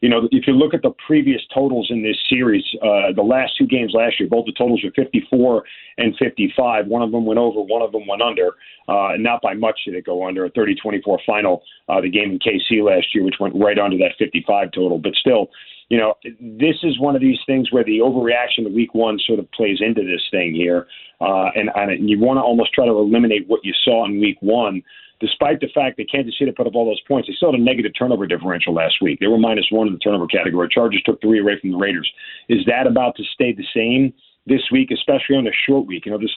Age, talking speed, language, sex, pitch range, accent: 40-59, 250 wpm, English, male, 105-130 Hz, American